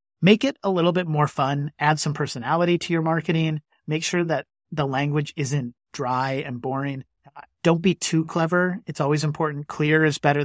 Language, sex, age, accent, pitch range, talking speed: English, male, 30-49, American, 135-155 Hz, 185 wpm